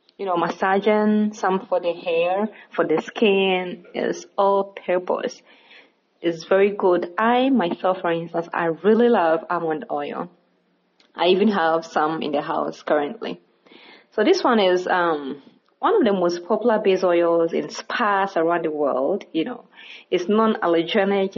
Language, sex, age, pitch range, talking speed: English, female, 20-39, 165-210 Hz, 150 wpm